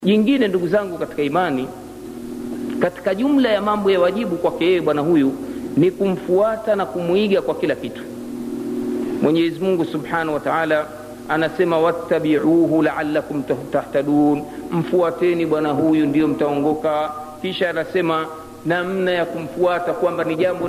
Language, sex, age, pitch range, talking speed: Swahili, male, 50-69, 180-280 Hz, 130 wpm